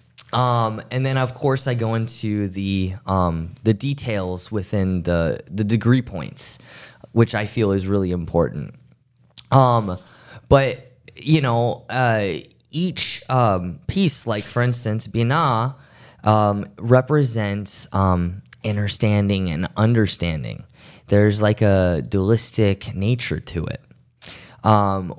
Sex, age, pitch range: male, 20-39, 100-125 Hz